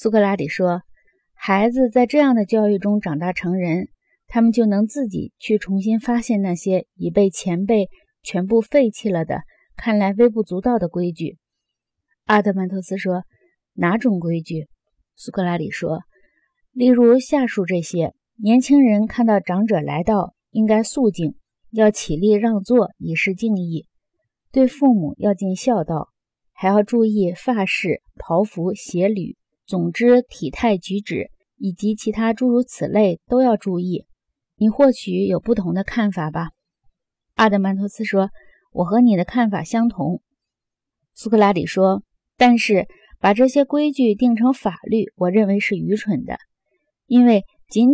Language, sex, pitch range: Chinese, female, 185-235 Hz